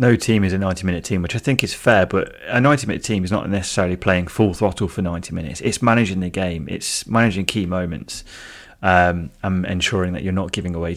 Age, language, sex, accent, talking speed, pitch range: 30-49, English, male, British, 230 wpm, 85-100 Hz